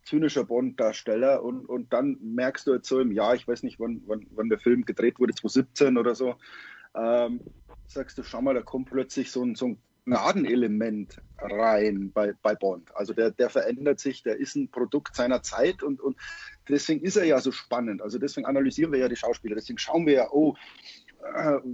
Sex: male